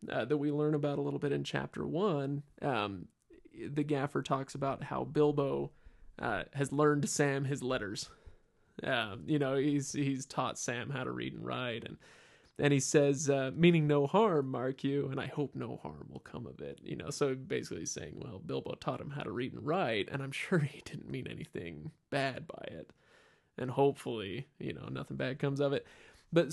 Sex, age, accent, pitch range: male, 20-39, American, 135-155 Hz